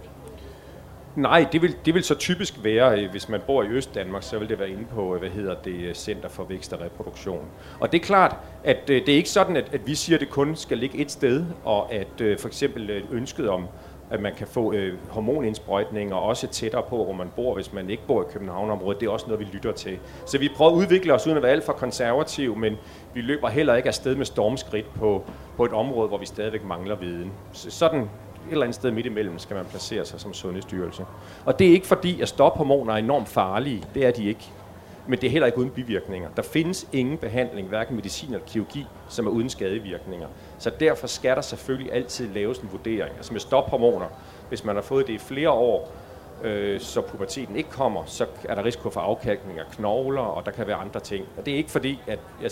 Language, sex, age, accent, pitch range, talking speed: Danish, male, 40-59, native, 100-135 Hz, 230 wpm